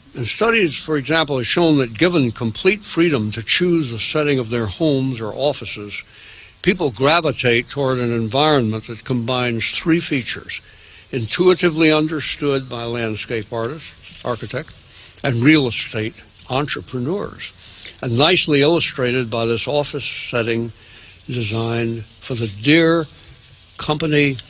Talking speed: 120 wpm